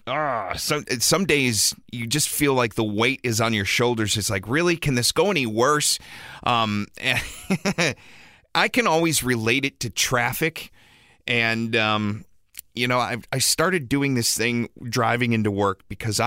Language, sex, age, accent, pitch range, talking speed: English, male, 30-49, American, 105-130 Hz, 160 wpm